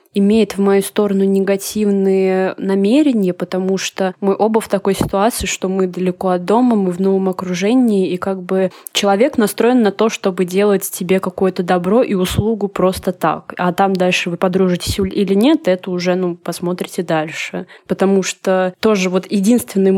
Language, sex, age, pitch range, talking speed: Russian, female, 20-39, 185-215 Hz, 165 wpm